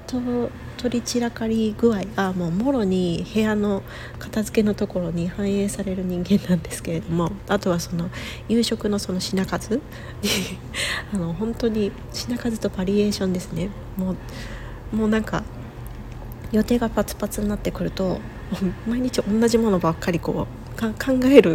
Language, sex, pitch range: Japanese, female, 175-225 Hz